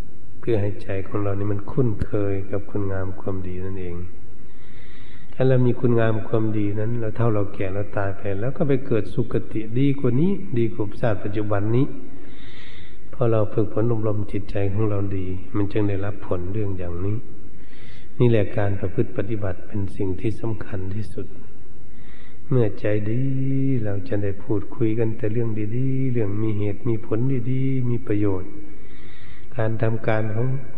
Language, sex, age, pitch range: Thai, male, 60-79, 100-115 Hz